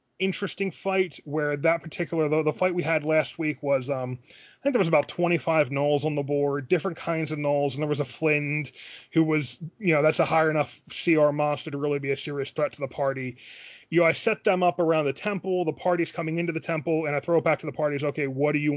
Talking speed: 255 wpm